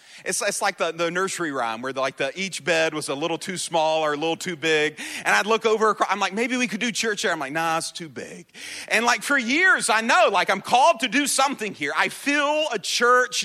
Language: English